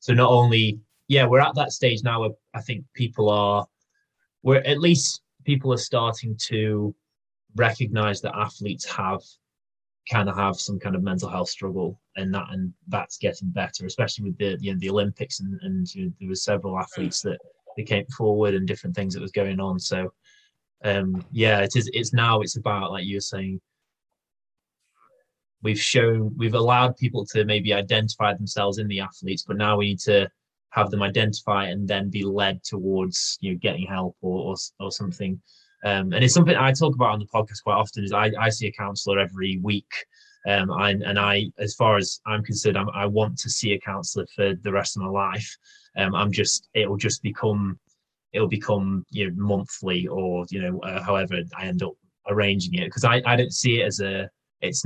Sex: male